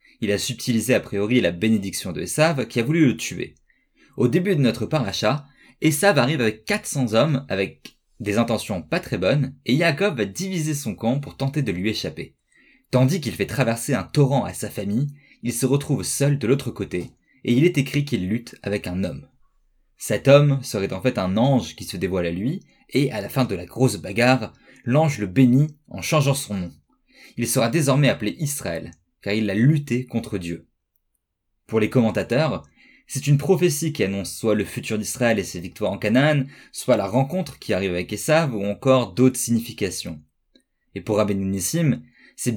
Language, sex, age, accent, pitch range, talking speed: French, male, 20-39, French, 105-140 Hz, 190 wpm